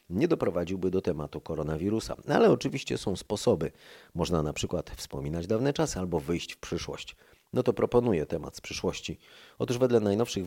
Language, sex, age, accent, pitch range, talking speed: Polish, male, 30-49, native, 85-105 Hz, 160 wpm